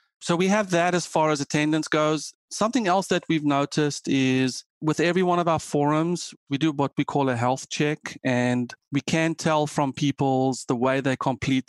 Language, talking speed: English, 200 wpm